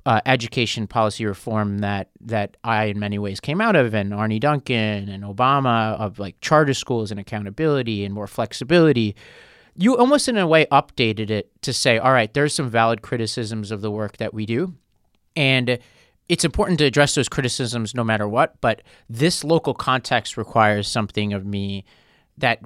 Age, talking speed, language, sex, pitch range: 30-49, 175 wpm, English, male, 110-140 Hz